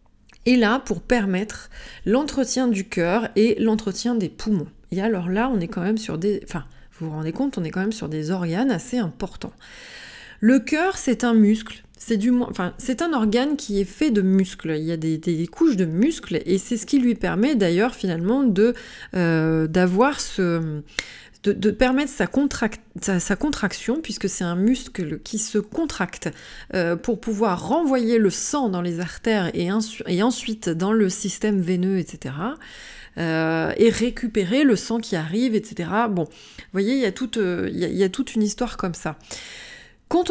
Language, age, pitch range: French, 30-49, 180-245 Hz